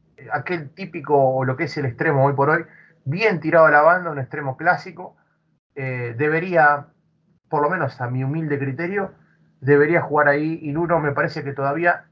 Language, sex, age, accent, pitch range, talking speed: Spanish, male, 30-49, Argentinian, 145-185 Hz, 185 wpm